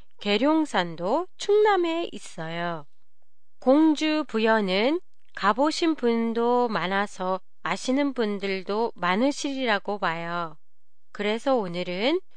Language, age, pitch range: Japanese, 30-49, 195-300 Hz